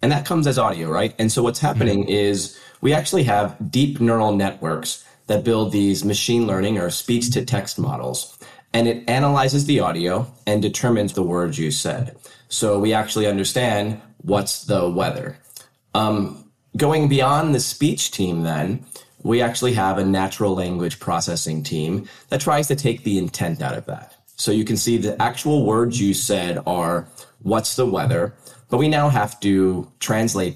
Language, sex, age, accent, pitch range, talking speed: English, male, 30-49, American, 95-125 Hz, 170 wpm